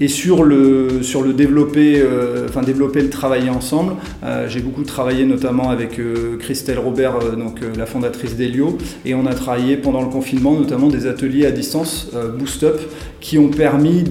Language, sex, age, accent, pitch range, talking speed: French, male, 30-49, French, 125-145 Hz, 185 wpm